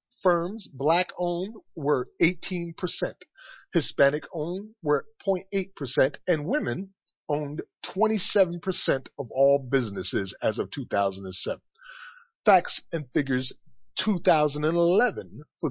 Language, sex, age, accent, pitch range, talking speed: English, male, 40-59, American, 135-200 Hz, 85 wpm